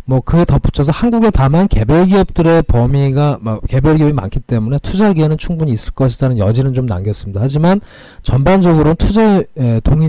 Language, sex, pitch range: Korean, male, 120-170 Hz